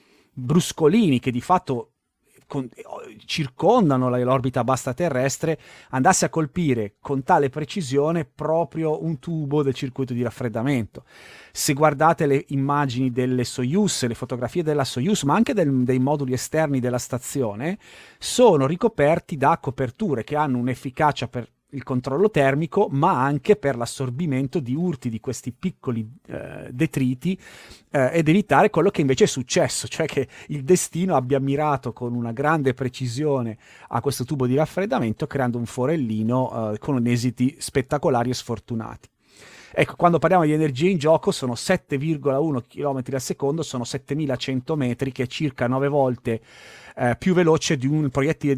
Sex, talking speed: male, 145 wpm